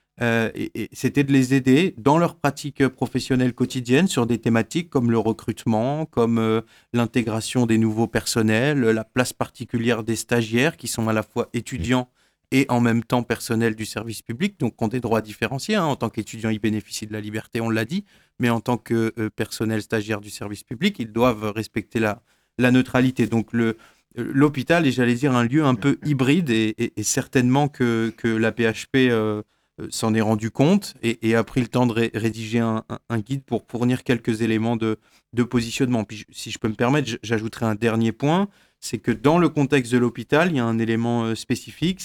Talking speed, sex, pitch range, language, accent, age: 205 wpm, male, 115-130 Hz, French, French, 40-59